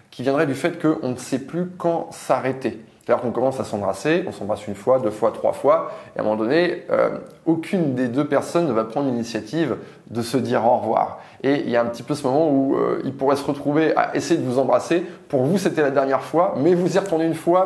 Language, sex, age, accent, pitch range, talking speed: French, male, 20-39, French, 110-160 Hz, 250 wpm